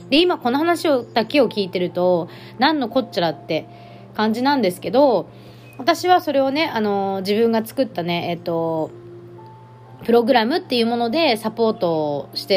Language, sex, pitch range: Japanese, female, 175-270 Hz